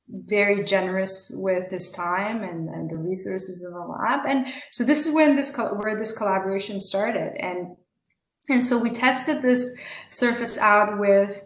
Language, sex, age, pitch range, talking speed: English, female, 20-39, 190-230 Hz, 160 wpm